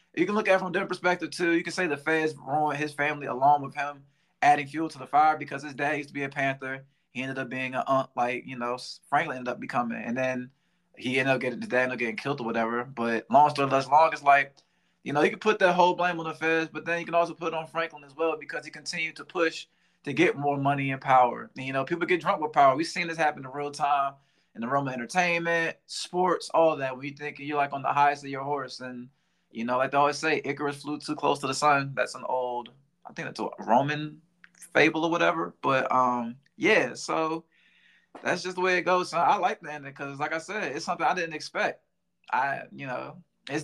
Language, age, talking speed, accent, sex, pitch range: English, 20-39, 250 wpm, American, male, 140-170 Hz